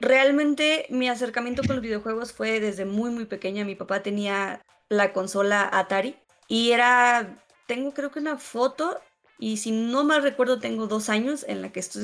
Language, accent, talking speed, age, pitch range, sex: Spanish, Mexican, 180 wpm, 20-39, 200-245 Hz, female